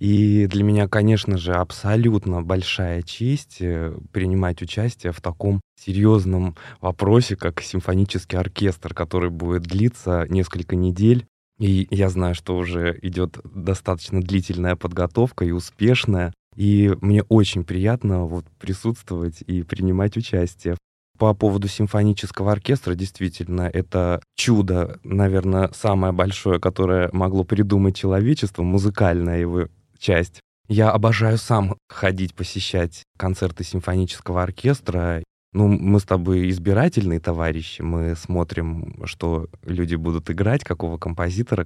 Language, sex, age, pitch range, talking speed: Russian, male, 20-39, 90-105 Hz, 115 wpm